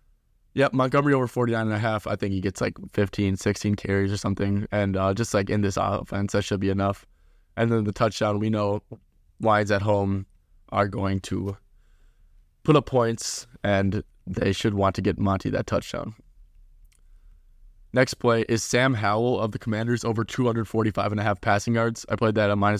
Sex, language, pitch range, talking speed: male, English, 95-115 Hz, 175 wpm